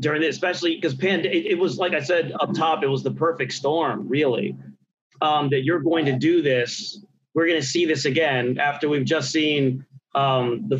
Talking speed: 205 wpm